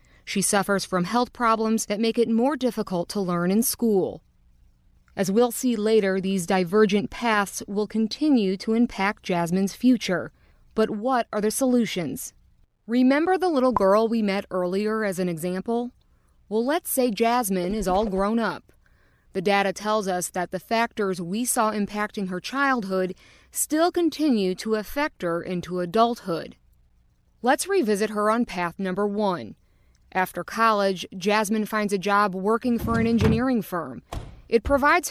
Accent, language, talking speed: American, English, 150 wpm